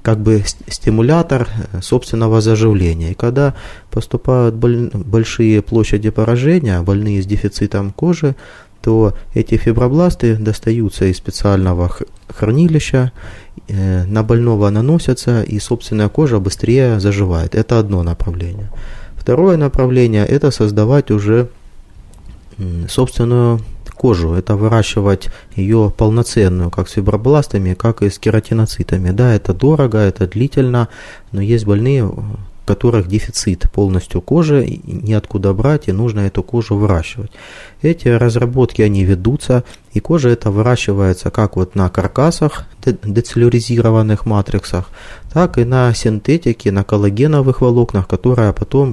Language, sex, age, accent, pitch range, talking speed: Russian, male, 20-39, native, 100-120 Hz, 120 wpm